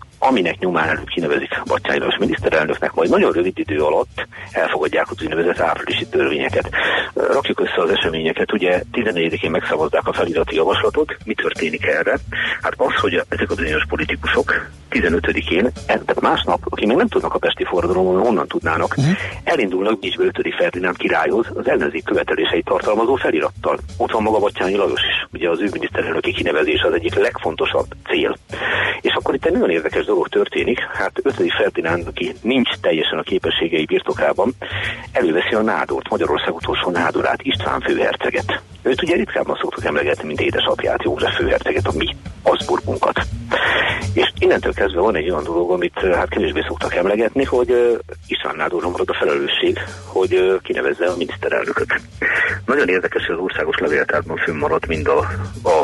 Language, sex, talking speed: Hungarian, male, 150 wpm